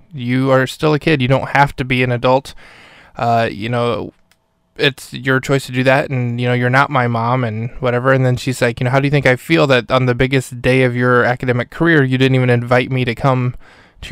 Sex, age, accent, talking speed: male, 20-39, American, 250 wpm